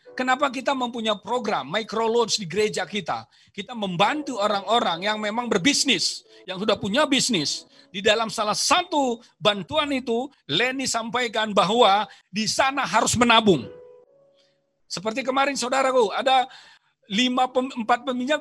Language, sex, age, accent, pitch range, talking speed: Indonesian, male, 40-59, native, 220-300 Hz, 125 wpm